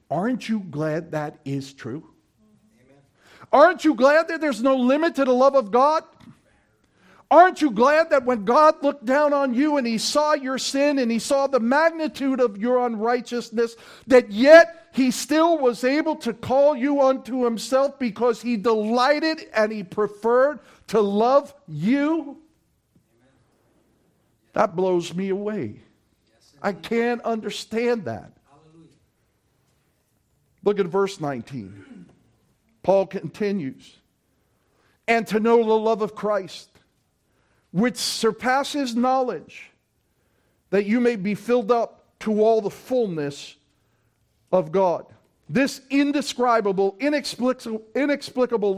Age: 50-69